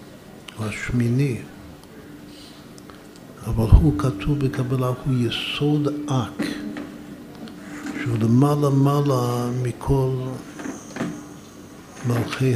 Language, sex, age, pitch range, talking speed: Hebrew, male, 60-79, 110-130 Hz, 55 wpm